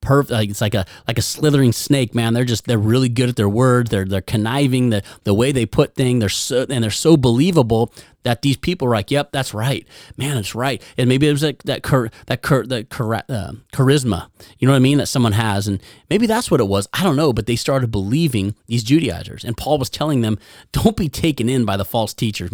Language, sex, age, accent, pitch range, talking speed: English, male, 30-49, American, 110-150 Hz, 235 wpm